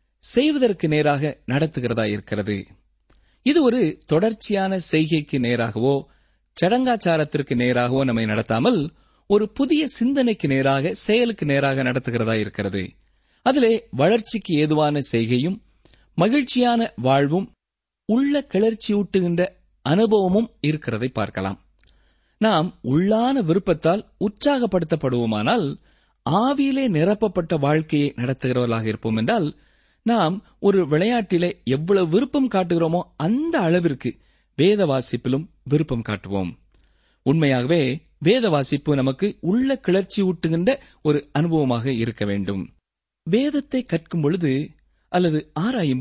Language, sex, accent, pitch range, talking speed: Tamil, male, native, 130-210 Hz, 85 wpm